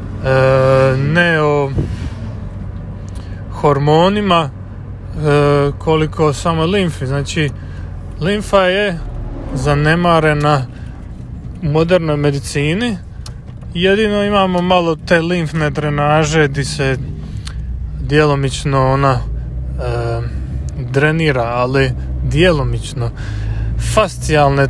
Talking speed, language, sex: 80 wpm, Croatian, male